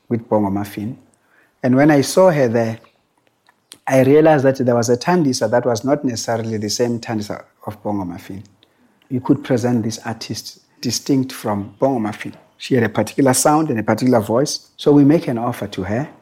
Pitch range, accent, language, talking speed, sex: 110-135 Hz, South African, English, 190 wpm, male